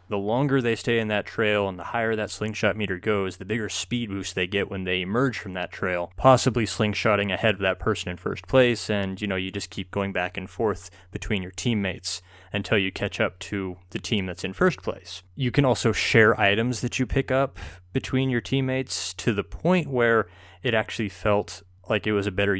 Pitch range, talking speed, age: 95-115 Hz, 220 wpm, 20-39